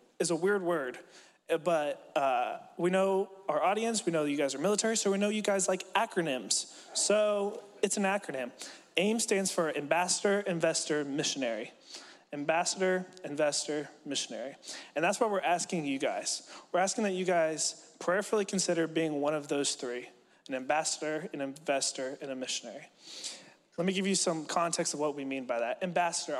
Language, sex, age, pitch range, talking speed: English, male, 20-39, 150-195 Hz, 175 wpm